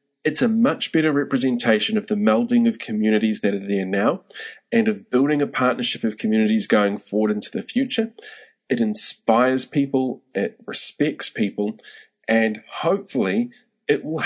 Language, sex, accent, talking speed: English, male, Australian, 150 wpm